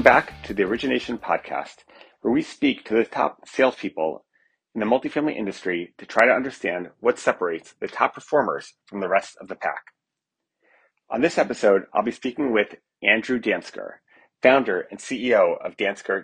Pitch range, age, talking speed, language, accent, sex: 110-145 Hz, 30-49, 170 wpm, English, American, male